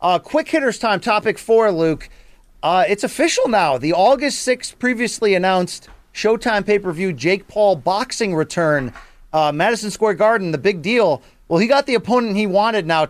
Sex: male